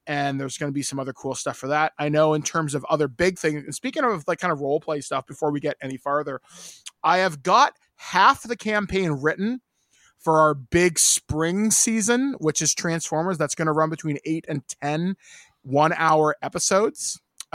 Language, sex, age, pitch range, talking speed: English, male, 20-39, 150-180 Hz, 200 wpm